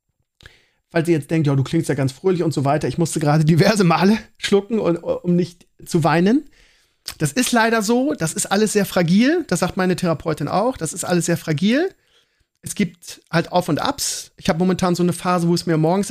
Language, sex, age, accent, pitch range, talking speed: German, male, 40-59, German, 145-180 Hz, 215 wpm